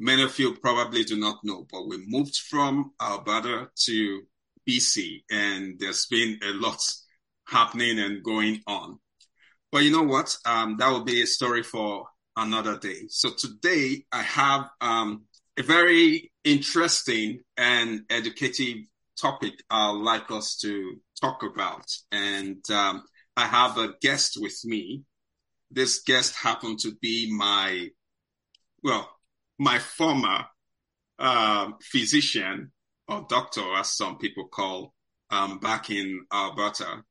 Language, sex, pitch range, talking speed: English, male, 105-140 Hz, 135 wpm